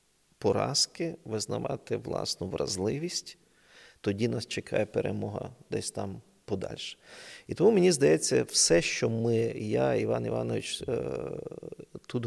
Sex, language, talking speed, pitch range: male, Ukrainian, 110 wpm, 105-150 Hz